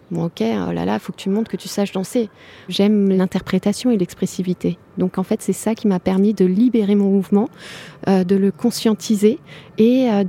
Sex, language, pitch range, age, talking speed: female, French, 195-235 Hz, 30-49, 205 wpm